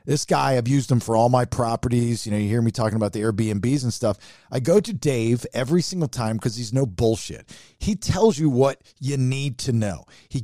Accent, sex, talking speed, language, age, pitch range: American, male, 230 wpm, English, 40-59, 115-165 Hz